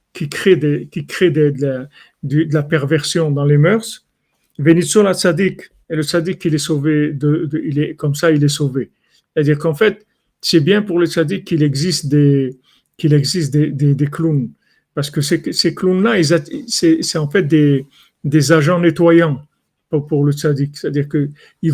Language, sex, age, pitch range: French, male, 50-69, 145-170 Hz